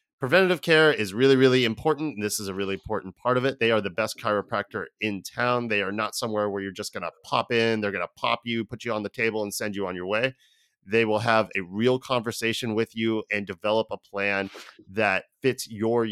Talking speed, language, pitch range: 235 wpm, English, 100-120 Hz